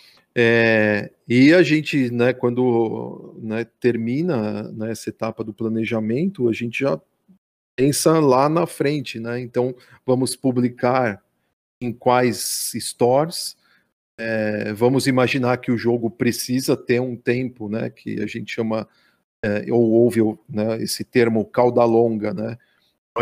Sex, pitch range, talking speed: male, 110-130 Hz, 135 wpm